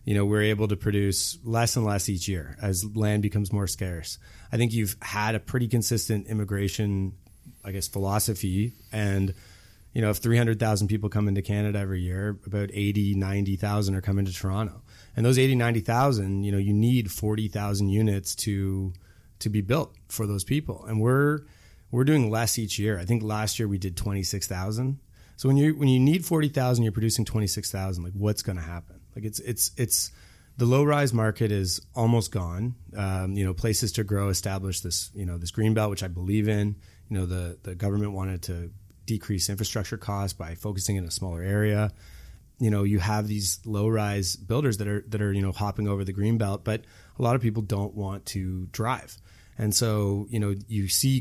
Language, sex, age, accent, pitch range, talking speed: English, male, 30-49, American, 95-110 Hz, 200 wpm